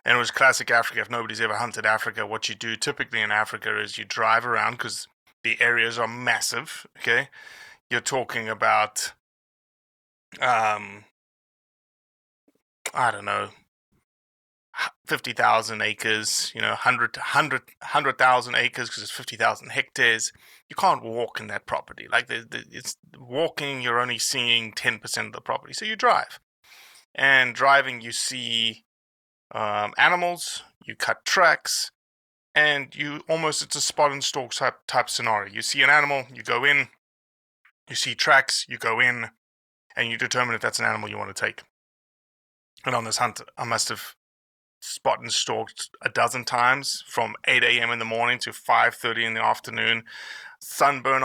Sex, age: male, 20-39